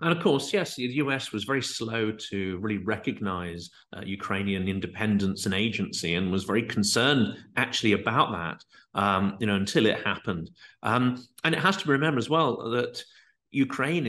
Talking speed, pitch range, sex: 175 wpm, 100-130 Hz, male